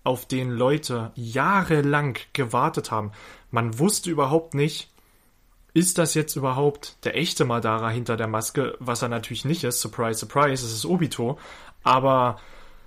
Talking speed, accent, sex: 145 wpm, German, male